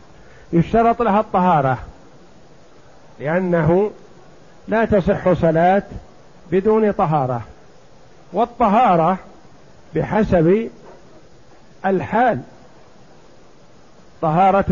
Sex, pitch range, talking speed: male, 170-195 Hz, 55 wpm